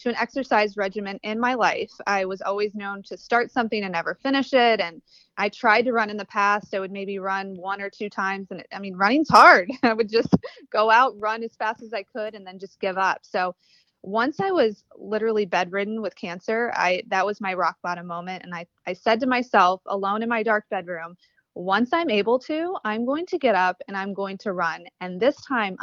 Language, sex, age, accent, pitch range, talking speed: English, female, 20-39, American, 190-230 Hz, 230 wpm